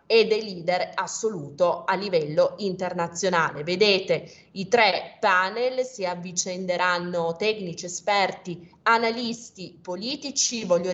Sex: female